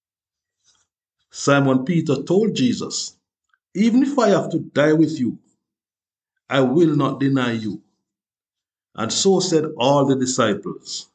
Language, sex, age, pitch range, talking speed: English, male, 50-69, 135-210 Hz, 125 wpm